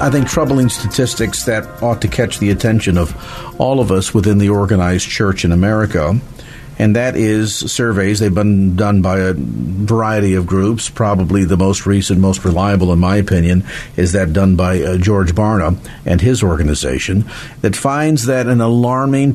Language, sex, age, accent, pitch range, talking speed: English, male, 50-69, American, 100-130 Hz, 175 wpm